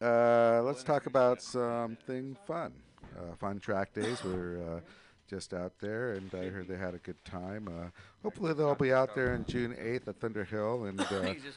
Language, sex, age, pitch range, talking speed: English, male, 50-69, 95-130 Hz, 190 wpm